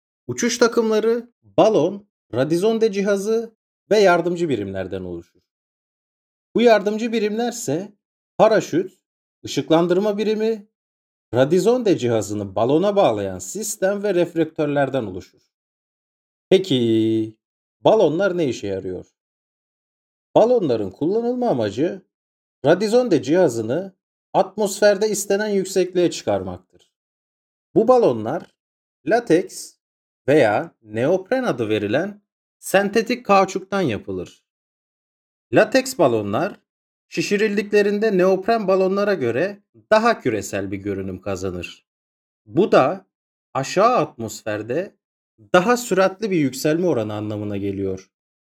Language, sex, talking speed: Turkish, male, 85 wpm